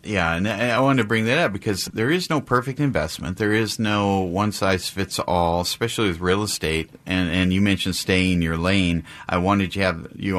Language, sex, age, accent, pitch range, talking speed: English, male, 40-59, American, 85-105 Hz, 220 wpm